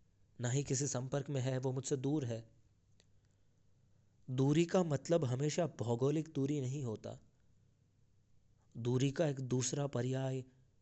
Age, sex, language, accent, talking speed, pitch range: 20-39, male, Hindi, native, 120 wpm, 110-130 Hz